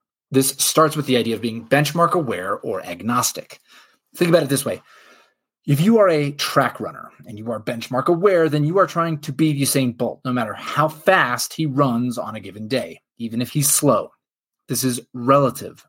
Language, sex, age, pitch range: English, male, 30-49, 120-160 Hz